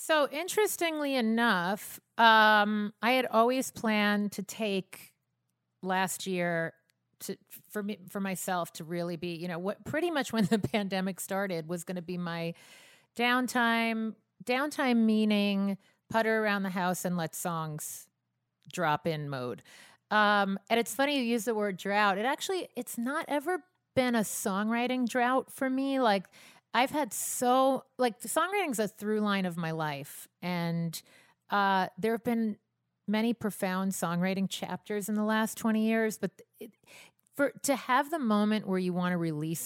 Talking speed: 160 wpm